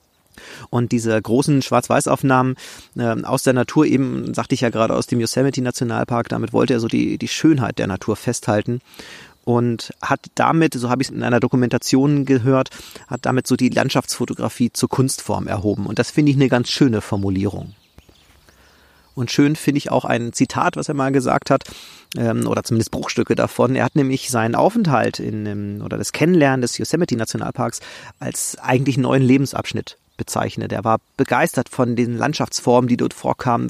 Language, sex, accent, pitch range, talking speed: German, male, German, 115-135 Hz, 165 wpm